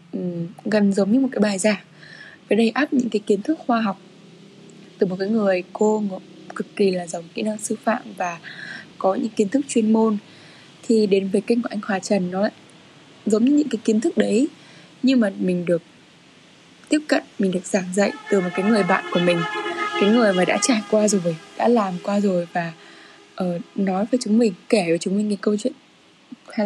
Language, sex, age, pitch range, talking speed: Vietnamese, female, 10-29, 190-235 Hz, 210 wpm